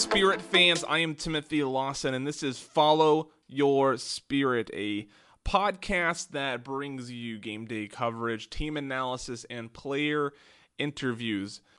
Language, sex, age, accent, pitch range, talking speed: English, male, 30-49, American, 115-150 Hz, 125 wpm